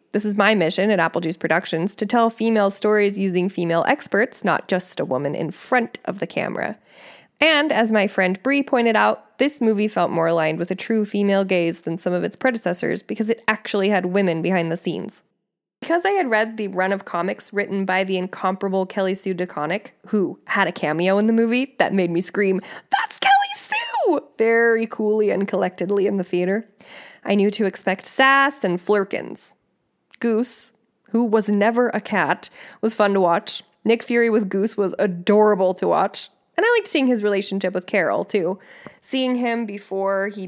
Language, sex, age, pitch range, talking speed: English, female, 20-39, 185-230 Hz, 190 wpm